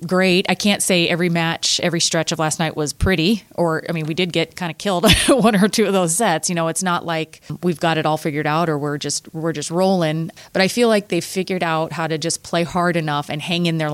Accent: American